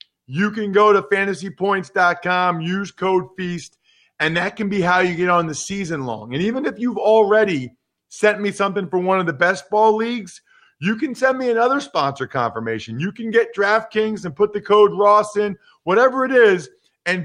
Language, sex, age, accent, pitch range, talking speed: English, male, 40-59, American, 160-210 Hz, 190 wpm